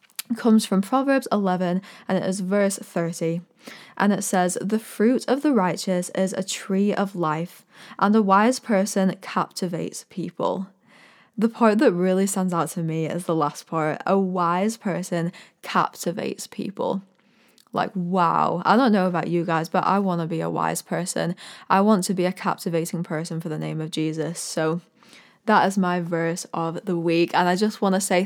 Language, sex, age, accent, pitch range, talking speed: English, female, 10-29, British, 180-210 Hz, 185 wpm